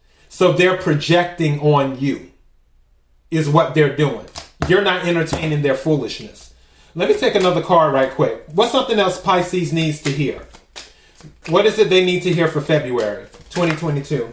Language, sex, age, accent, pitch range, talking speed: English, male, 30-49, American, 140-205 Hz, 160 wpm